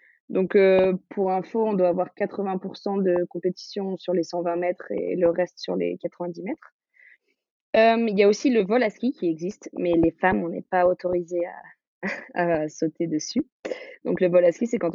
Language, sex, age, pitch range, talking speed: French, female, 20-39, 175-215 Hz, 205 wpm